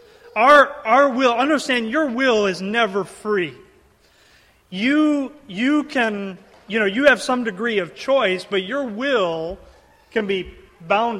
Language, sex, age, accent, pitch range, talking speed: English, male, 40-59, American, 190-240 Hz, 140 wpm